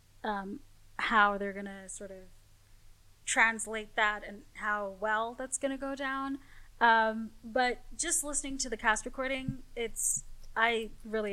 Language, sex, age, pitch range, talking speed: English, female, 10-29, 205-250 Hz, 150 wpm